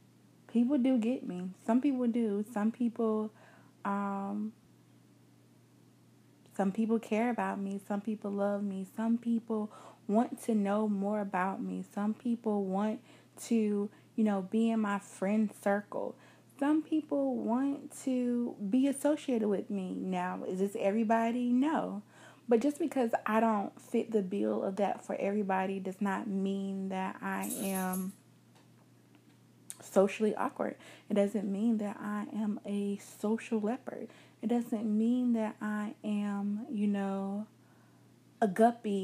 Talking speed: 140 wpm